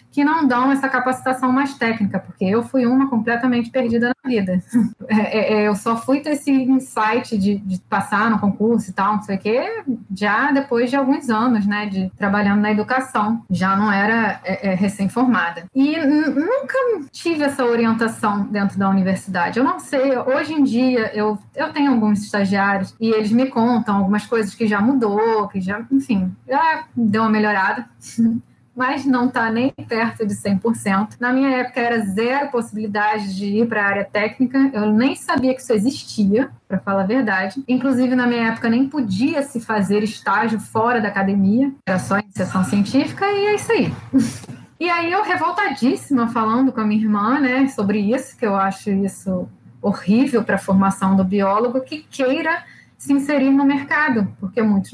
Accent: Brazilian